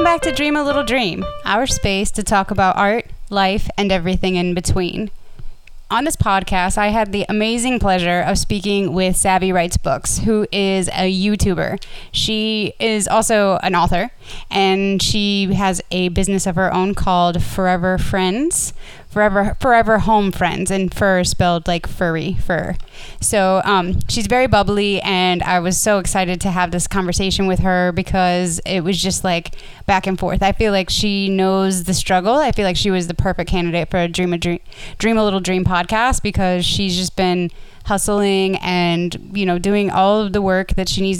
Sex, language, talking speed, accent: female, English, 185 wpm, American